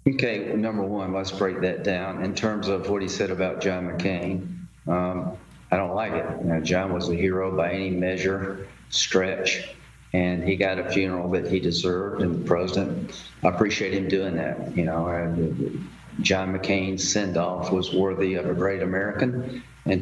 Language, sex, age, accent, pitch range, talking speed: English, male, 40-59, American, 90-100 Hz, 175 wpm